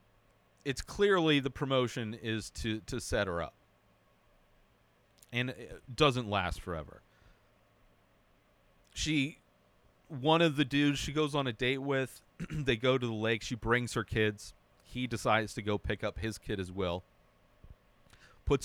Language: English